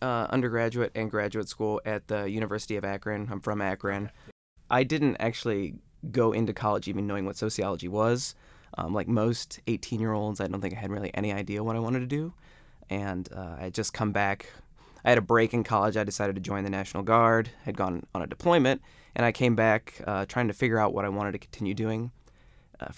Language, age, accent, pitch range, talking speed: English, 20-39, American, 100-120 Hz, 220 wpm